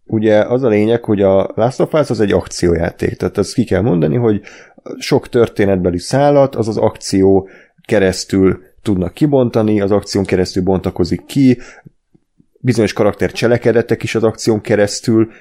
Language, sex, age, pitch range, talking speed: Hungarian, male, 30-49, 95-110 Hz, 145 wpm